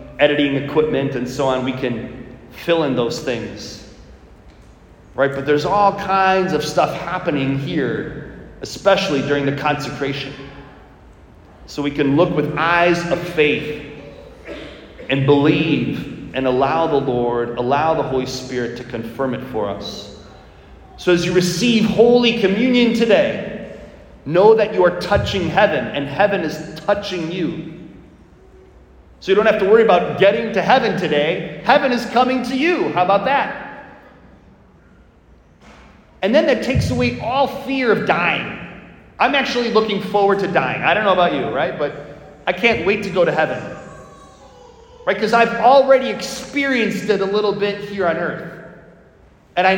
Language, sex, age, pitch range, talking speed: English, male, 30-49, 140-205 Hz, 155 wpm